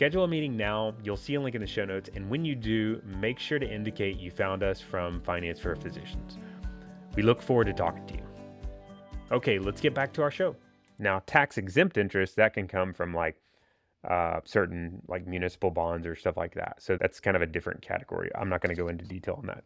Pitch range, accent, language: 95-125 Hz, American, English